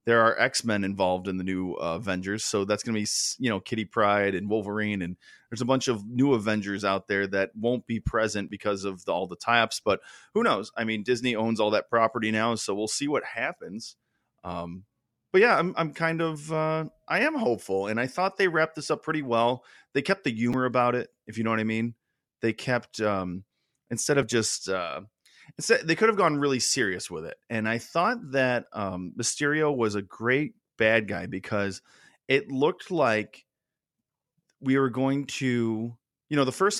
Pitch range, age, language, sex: 105-140 Hz, 30-49, English, male